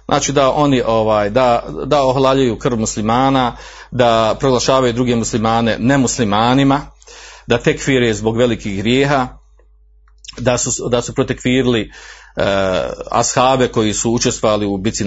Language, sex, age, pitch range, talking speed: Croatian, male, 40-59, 120-150 Hz, 120 wpm